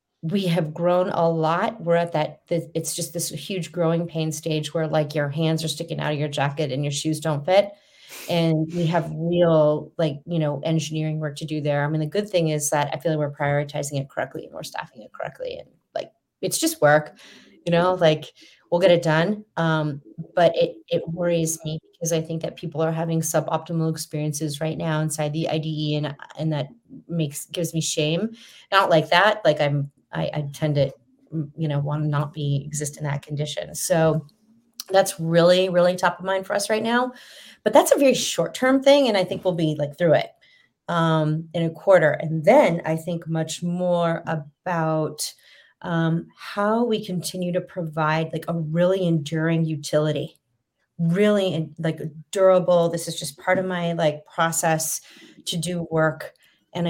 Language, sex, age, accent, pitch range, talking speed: English, female, 30-49, American, 155-180 Hz, 190 wpm